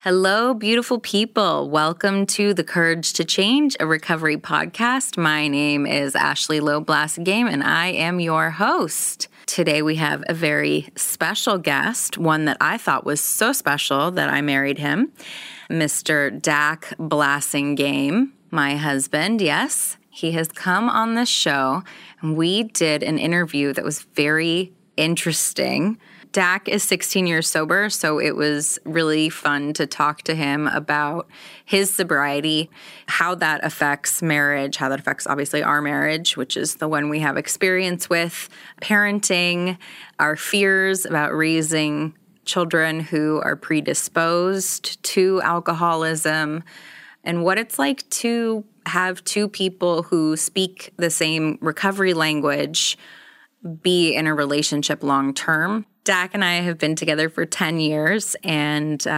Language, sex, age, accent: English, female, 20-39, American